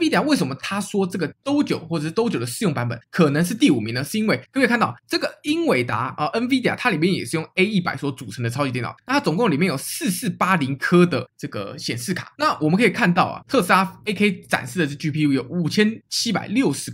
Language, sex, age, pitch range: Chinese, male, 20-39, 145-210 Hz